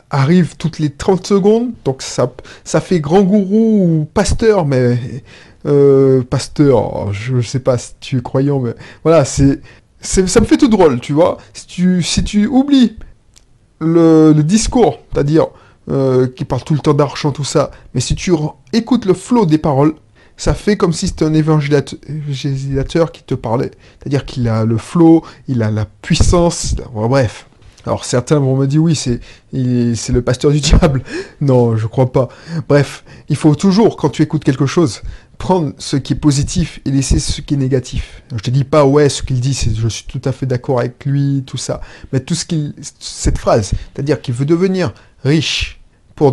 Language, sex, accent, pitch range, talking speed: French, male, French, 125-160 Hz, 195 wpm